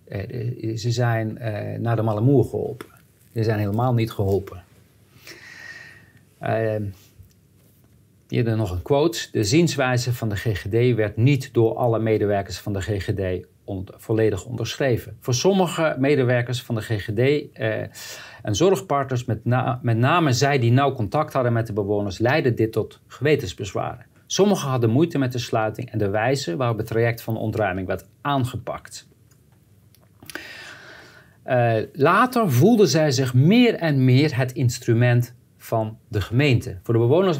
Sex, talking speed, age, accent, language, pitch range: male, 150 wpm, 50-69, Dutch, Dutch, 110-135 Hz